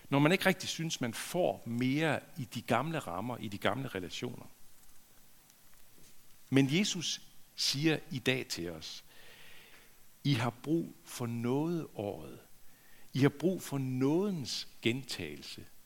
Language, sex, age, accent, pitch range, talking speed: Danish, male, 60-79, native, 110-150 Hz, 130 wpm